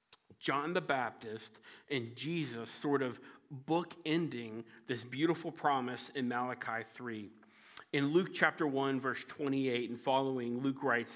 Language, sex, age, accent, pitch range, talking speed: English, male, 40-59, American, 130-170 Hz, 130 wpm